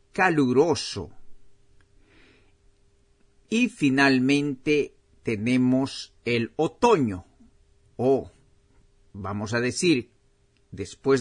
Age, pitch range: 50-69, 105-150 Hz